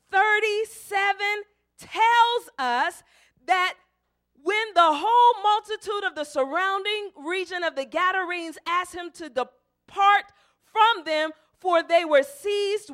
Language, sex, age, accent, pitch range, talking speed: English, female, 40-59, American, 310-420 Hz, 115 wpm